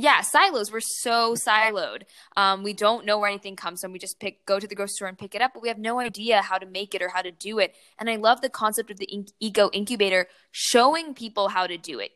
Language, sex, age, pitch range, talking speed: English, female, 10-29, 185-225 Hz, 265 wpm